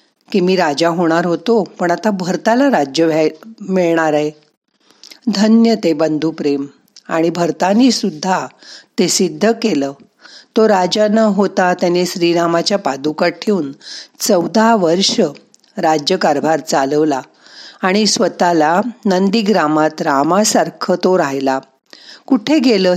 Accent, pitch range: native, 160-215 Hz